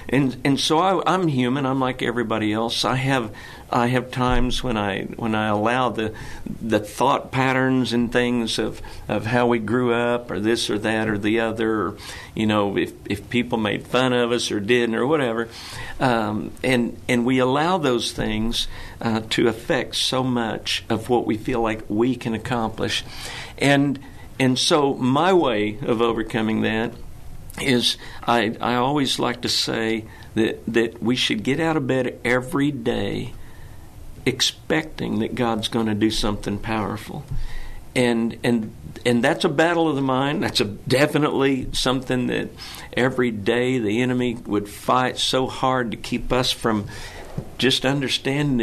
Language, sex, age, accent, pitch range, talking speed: English, male, 60-79, American, 110-130 Hz, 165 wpm